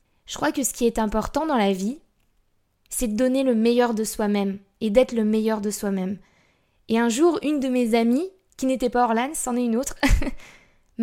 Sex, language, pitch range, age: female, French, 200-245 Hz, 20-39